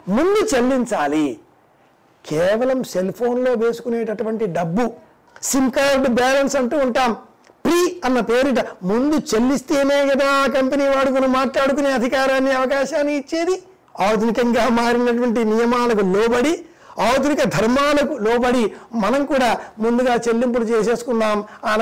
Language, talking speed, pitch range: Telugu, 105 wpm, 210-265 Hz